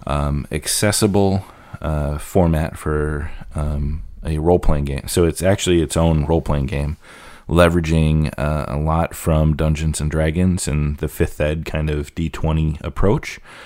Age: 30-49